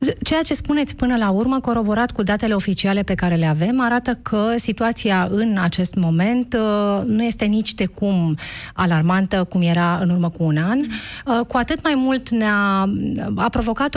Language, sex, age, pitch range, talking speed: Romanian, female, 30-49, 185-250 Hz, 180 wpm